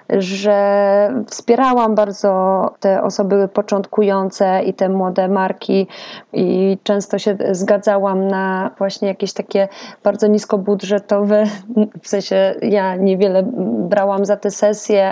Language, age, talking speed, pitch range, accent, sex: Polish, 20-39, 110 wpm, 195-220 Hz, native, female